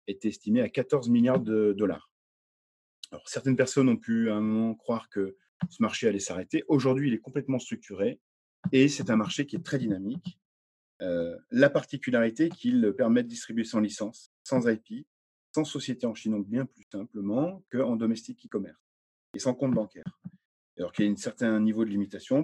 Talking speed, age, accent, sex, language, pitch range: 185 wpm, 40-59, French, male, English, 100-135 Hz